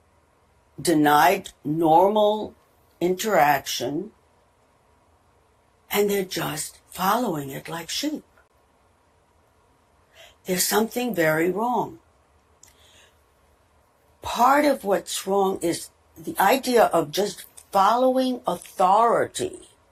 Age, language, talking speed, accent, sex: 60-79, Hebrew, 75 wpm, American, female